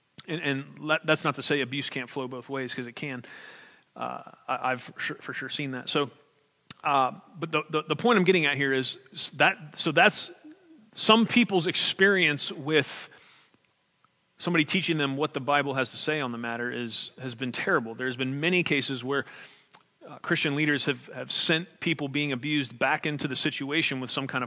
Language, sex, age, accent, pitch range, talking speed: English, male, 30-49, American, 130-160 Hz, 205 wpm